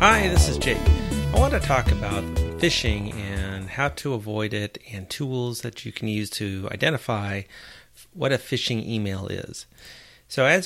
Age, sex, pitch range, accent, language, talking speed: 30-49, male, 100-120 Hz, American, English, 170 wpm